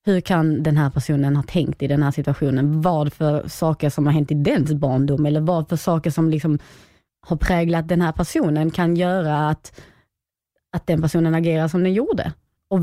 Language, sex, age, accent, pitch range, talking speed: Swedish, female, 30-49, native, 150-175 Hz, 195 wpm